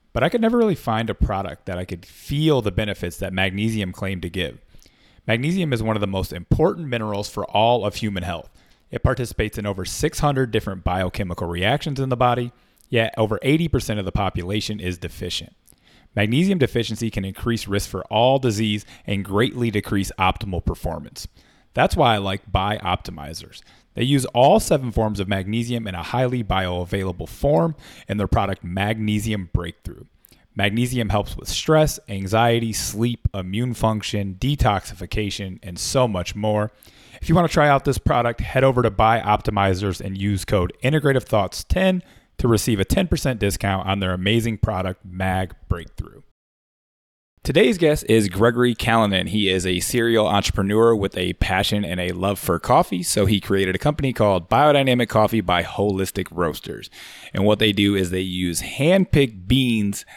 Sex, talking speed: male, 165 wpm